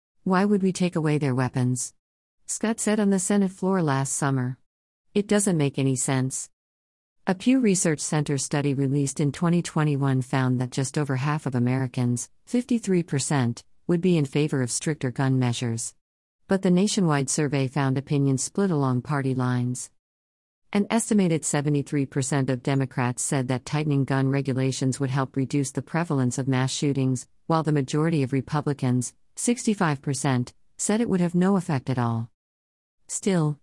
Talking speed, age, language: 155 wpm, 50-69, English